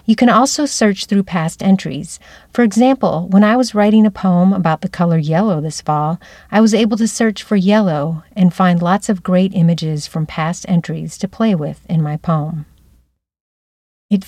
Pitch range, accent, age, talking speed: 165-205 Hz, American, 40-59, 185 wpm